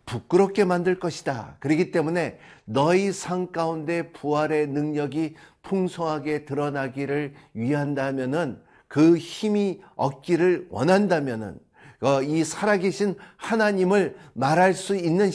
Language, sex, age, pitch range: Korean, male, 50-69, 155-195 Hz